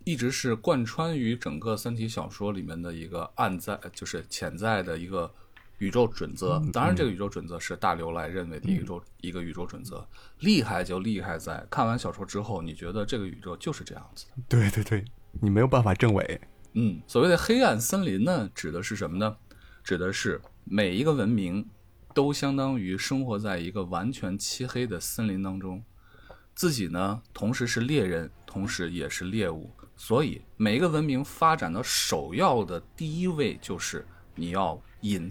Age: 20-39